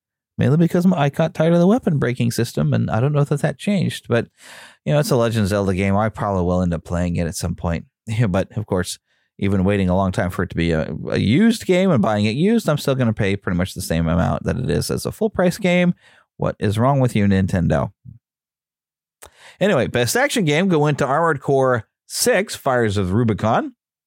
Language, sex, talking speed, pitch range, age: English, male, 230 wpm, 105-160 Hz, 30-49